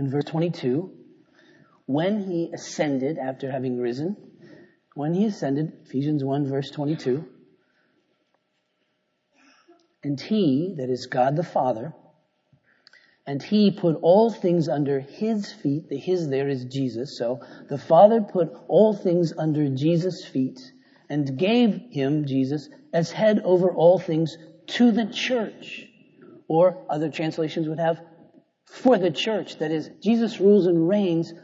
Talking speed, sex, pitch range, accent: 135 wpm, male, 140-200 Hz, American